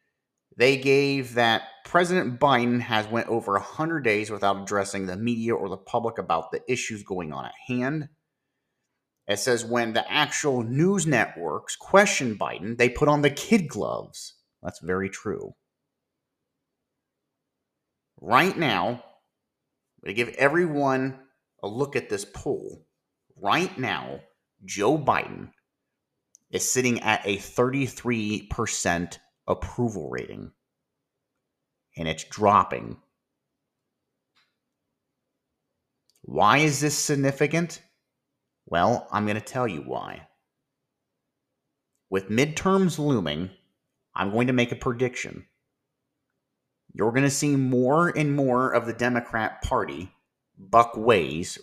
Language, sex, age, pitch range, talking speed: English, male, 30-49, 110-140 Hz, 115 wpm